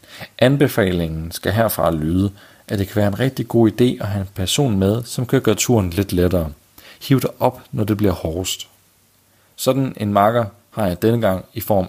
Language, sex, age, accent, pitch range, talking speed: Danish, male, 40-59, native, 95-115 Hz, 195 wpm